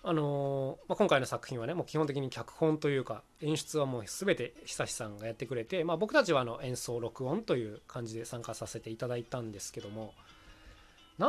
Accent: native